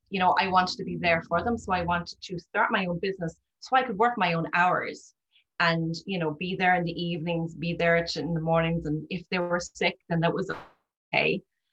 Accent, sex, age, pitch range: Irish, female, 30-49, 170-225 Hz